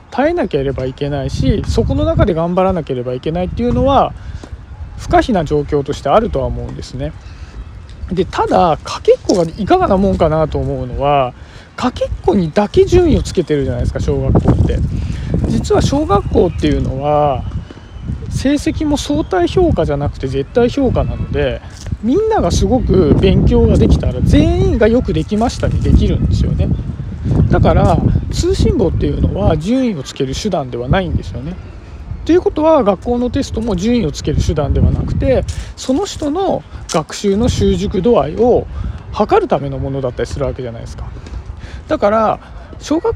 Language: Japanese